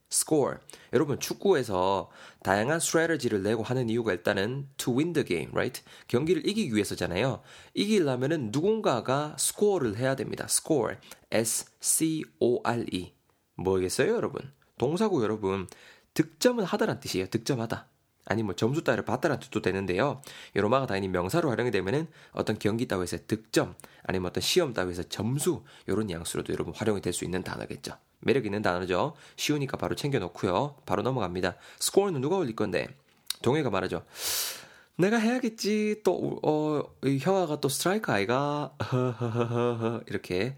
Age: 20-39